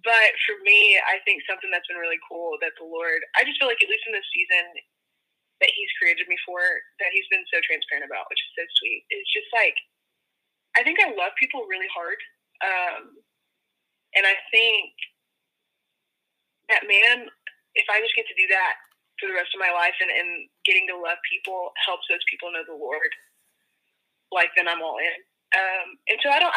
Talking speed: 200 wpm